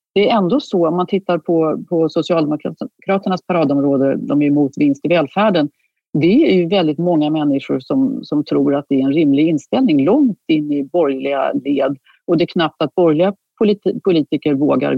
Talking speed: 180 wpm